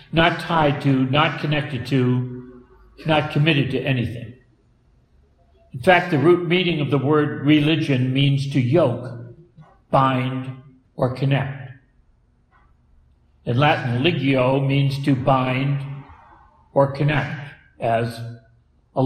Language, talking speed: English, 110 wpm